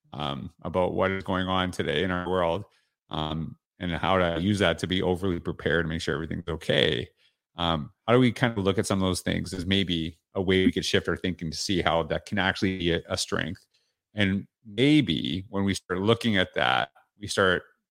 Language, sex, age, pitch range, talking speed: English, male, 30-49, 90-105 Hz, 220 wpm